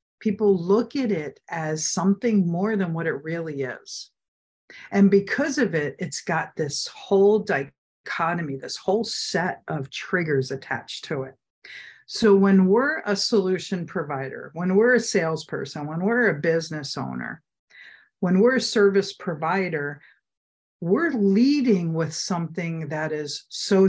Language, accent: English, American